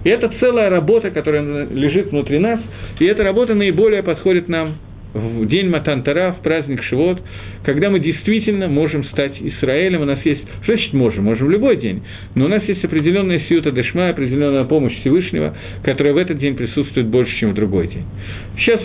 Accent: native